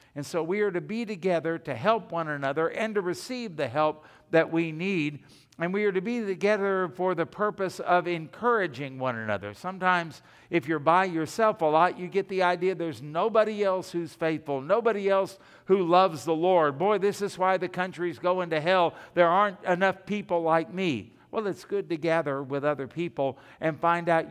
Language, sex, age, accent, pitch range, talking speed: English, male, 60-79, American, 150-205 Hz, 195 wpm